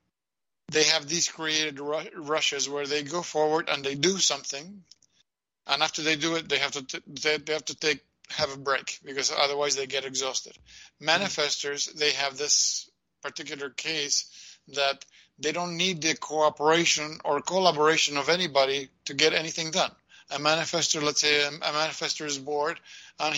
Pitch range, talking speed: 145-165 Hz, 160 wpm